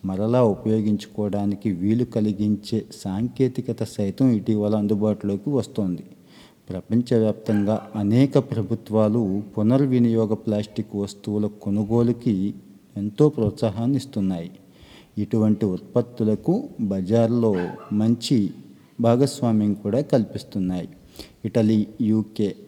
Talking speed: 70 wpm